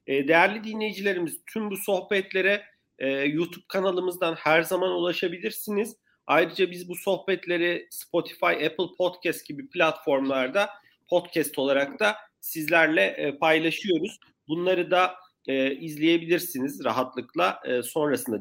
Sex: male